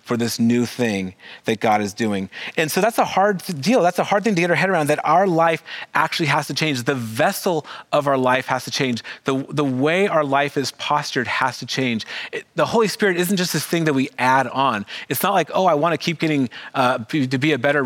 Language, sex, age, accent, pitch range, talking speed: English, male, 30-49, American, 120-160 Hz, 250 wpm